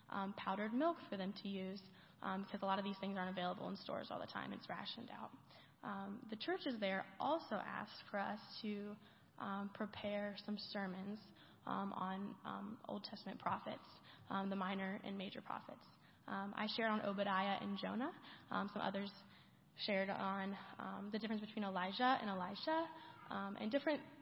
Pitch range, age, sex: 195-220 Hz, 10-29, female